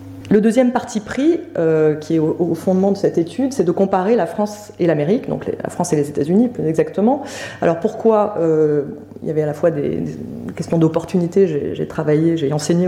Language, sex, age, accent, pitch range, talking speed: French, female, 30-49, French, 165-225 Hz, 220 wpm